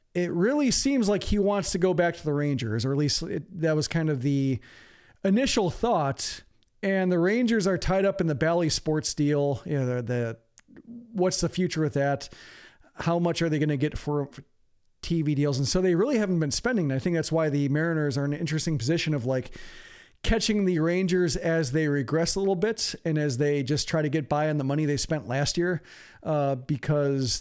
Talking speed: 210 wpm